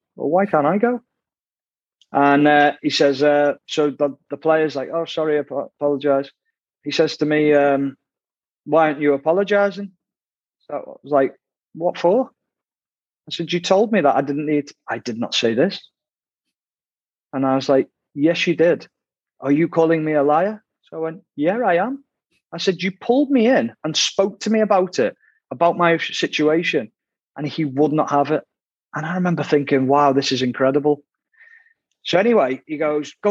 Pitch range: 145-185 Hz